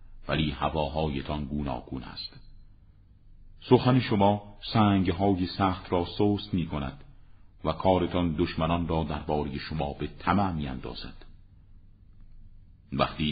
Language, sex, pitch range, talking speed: Persian, male, 75-95 Hz, 100 wpm